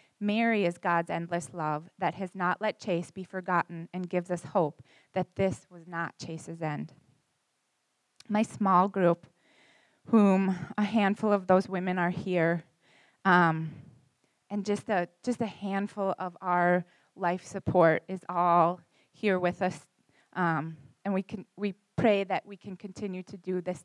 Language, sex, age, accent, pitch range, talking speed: English, female, 20-39, American, 175-205 Hz, 155 wpm